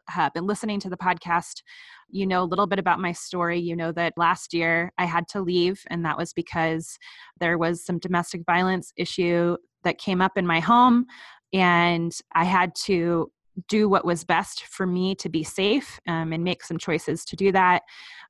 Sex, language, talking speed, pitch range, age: female, English, 195 wpm, 170-200 Hz, 20-39